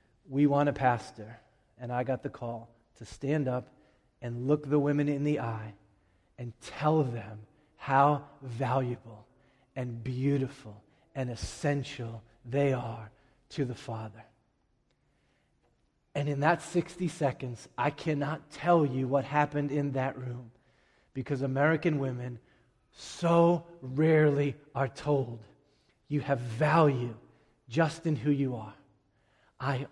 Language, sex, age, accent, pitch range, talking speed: English, male, 30-49, American, 115-145 Hz, 125 wpm